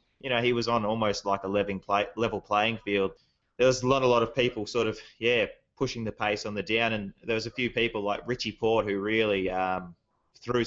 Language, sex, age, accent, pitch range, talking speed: English, male, 20-39, Australian, 100-115 Hz, 235 wpm